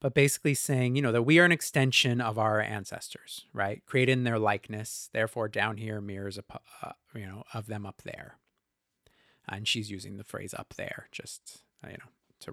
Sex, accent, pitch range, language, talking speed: male, American, 115-150 Hz, English, 185 wpm